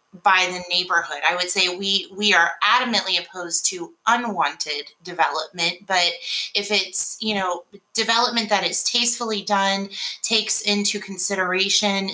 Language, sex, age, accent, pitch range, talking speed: English, female, 30-49, American, 180-210 Hz, 135 wpm